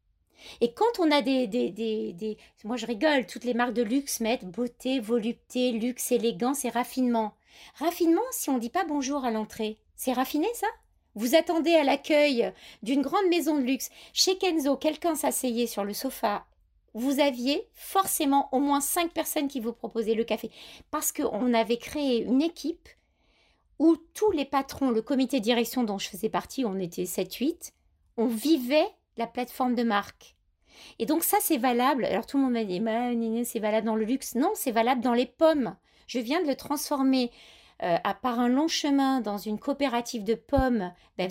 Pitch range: 230-290 Hz